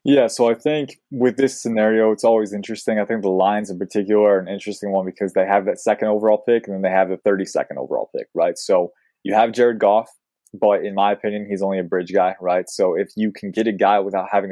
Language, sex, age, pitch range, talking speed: English, male, 20-39, 95-110 Hz, 250 wpm